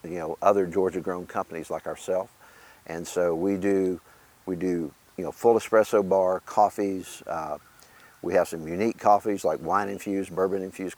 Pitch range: 90-105 Hz